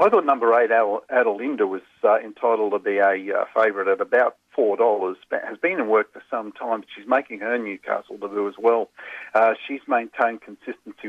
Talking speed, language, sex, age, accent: 195 wpm, English, male, 50-69, Australian